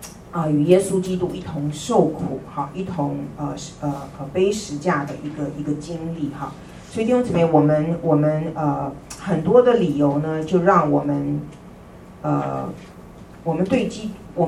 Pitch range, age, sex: 145-175 Hz, 40-59, female